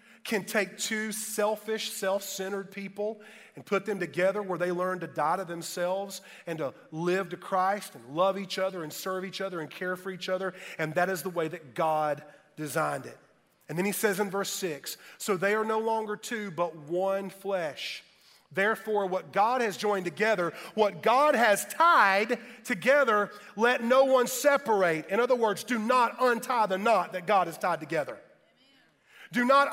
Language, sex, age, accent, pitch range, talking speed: English, male, 40-59, American, 185-235 Hz, 180 wpm